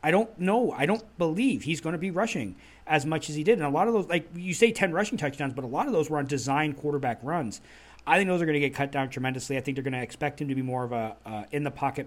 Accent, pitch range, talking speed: American, 140-180 Hz, 305 wpm